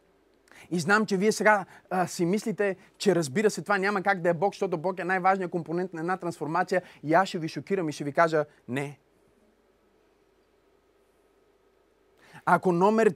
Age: 30-49